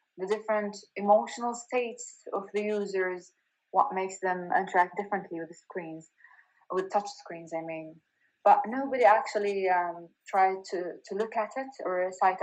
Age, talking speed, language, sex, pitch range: 20-39, 155 wpm, English, female, 180-215 Hz